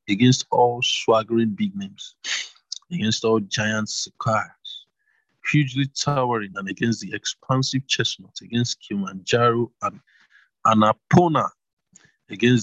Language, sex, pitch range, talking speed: English, male, 110-130 Hz, 100 wpm